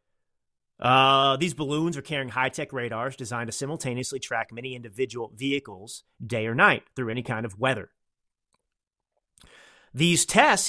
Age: 30-49